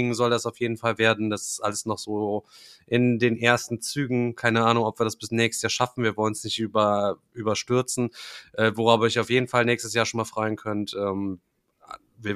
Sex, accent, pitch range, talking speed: male, German, 115-130 Hz, 210 wpm